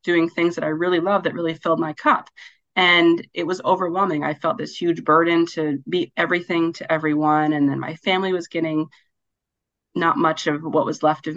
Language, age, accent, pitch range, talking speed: English, 30-49, American, 155-185 Hz, 200 wpm